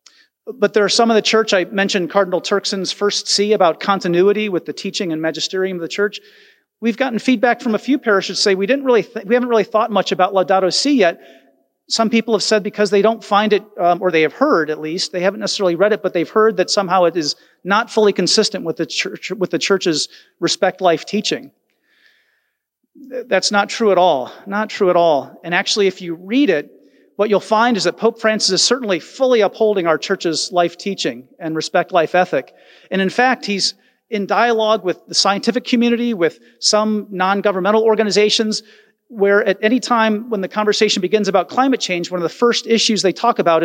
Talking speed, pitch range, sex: 210 wpm, 180-220 Hz, male